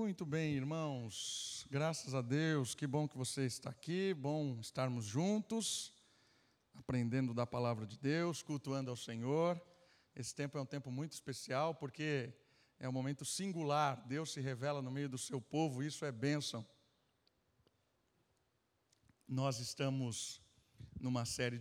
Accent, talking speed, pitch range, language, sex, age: Brazilian, 140 wpm, 125-165 Hz, Portuguese, male, 50-69